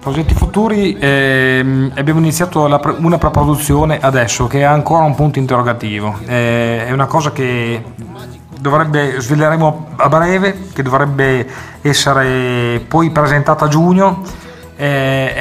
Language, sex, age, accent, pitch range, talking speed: Italian, male, 30-49, native, 125-150 Hz, 125 wpm